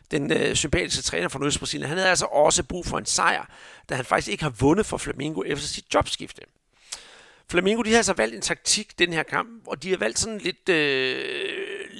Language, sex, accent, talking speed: Danish, male, native, 210 wpm